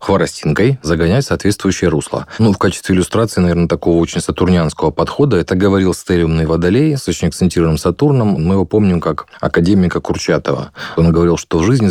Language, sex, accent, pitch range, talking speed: Russian, male, native, 85-105 Hz, 160 wpm